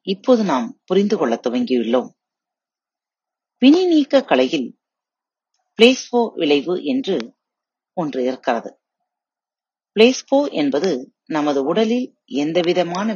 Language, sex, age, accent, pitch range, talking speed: Tamil, female, 30-49, native, 145-245 Hz, 65 wpm